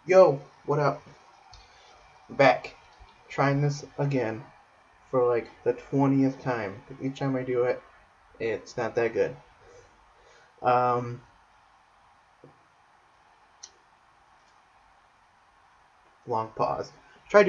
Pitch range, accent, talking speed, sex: 120-145 Hz, American, 85 wpm, male